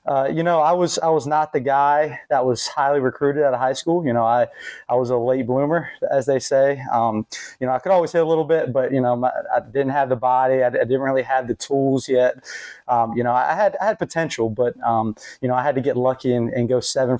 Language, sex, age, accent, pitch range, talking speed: English, male, 20-39, American, 120-145 Hz, 270 wpm